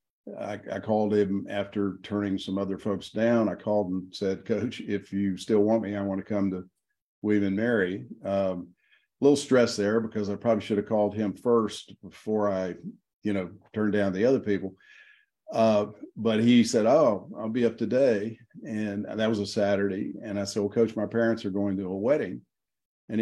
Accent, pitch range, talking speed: American, 100-115 Hz, 195 wpm